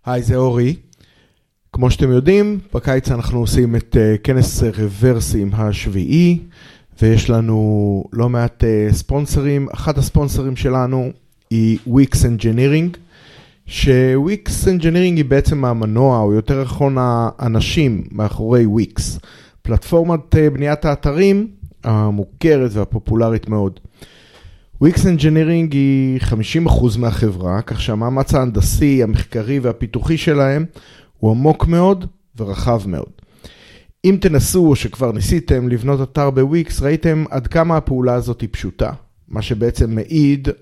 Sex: male